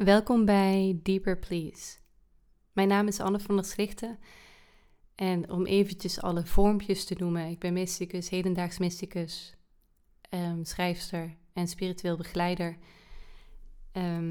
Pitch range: 165-185 Hz